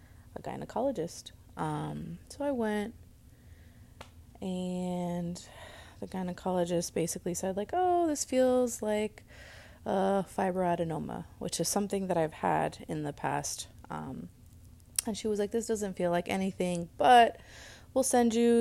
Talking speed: 135 wpm